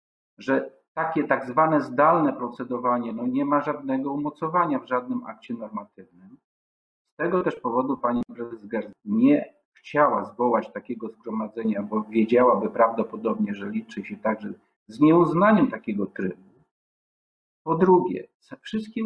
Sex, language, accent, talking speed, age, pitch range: male, Polish, native, 130 wpm, 50-69, 115-180 Hz